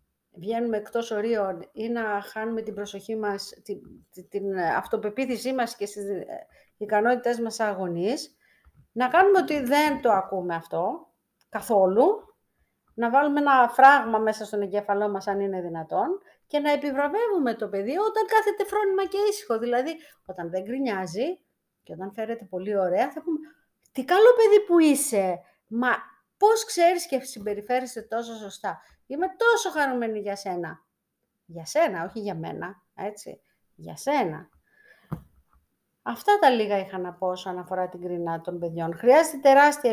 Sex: female